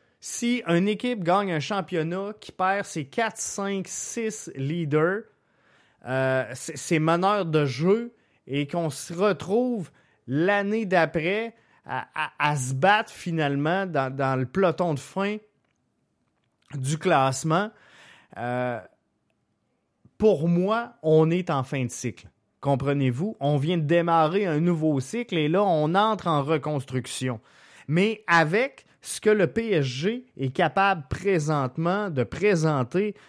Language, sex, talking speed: French, male, 130 wpm